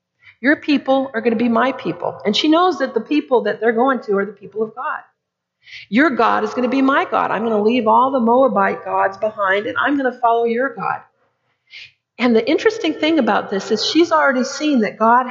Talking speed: 230 wpm